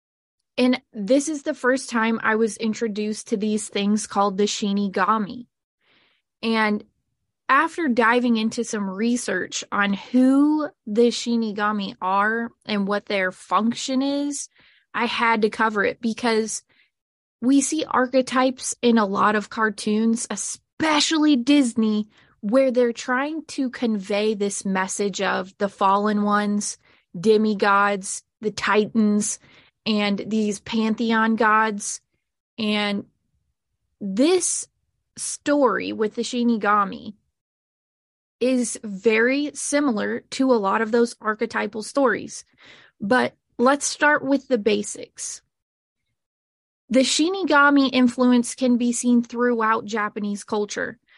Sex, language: female, English